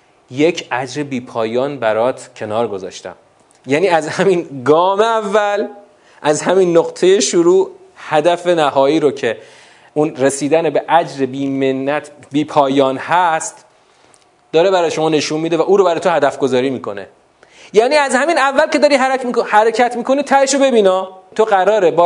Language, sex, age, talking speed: Persian, male, 30-49, 150 wpm